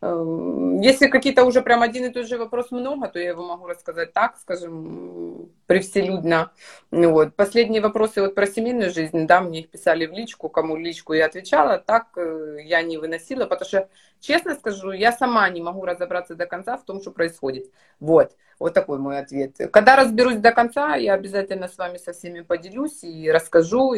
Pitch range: 160-235 Hz